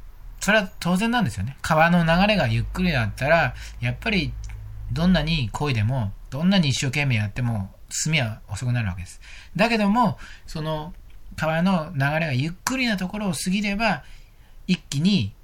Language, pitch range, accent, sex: Japanese, 115-180 Hz, native, male